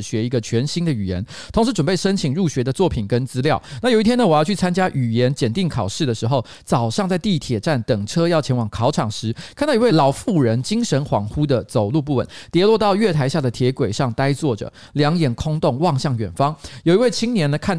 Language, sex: Chinese, male